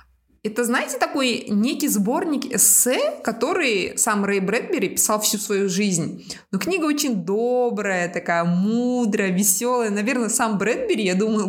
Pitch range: 195-245 Hz